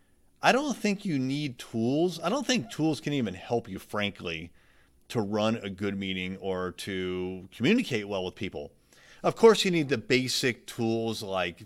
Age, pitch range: 30-49, 105-135 Hz